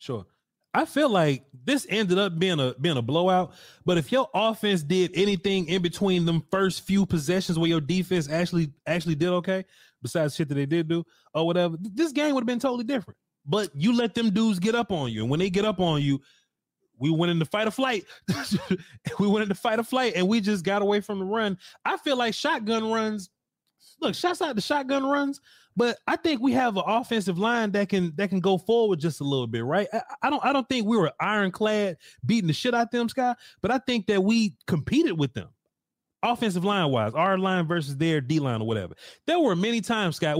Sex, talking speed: male, 225 wpm